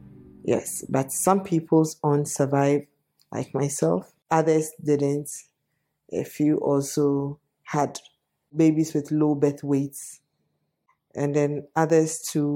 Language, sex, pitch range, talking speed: English, female, 145-165 Hz, 110 wpm